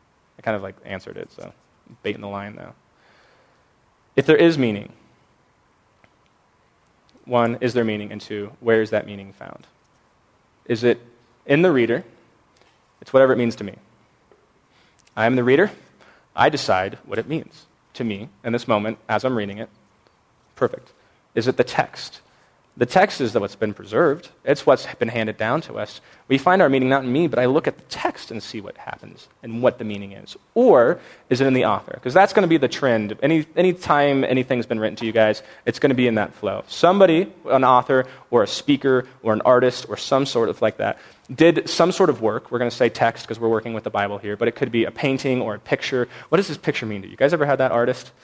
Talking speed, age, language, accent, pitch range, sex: 225 wpm, 20-39, English, American, 110-135 Hz, male